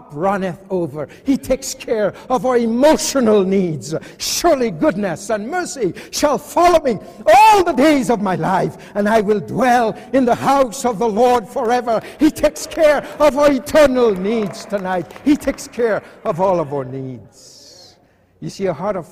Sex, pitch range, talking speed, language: male, 165-245 Hz, 170 wpm, English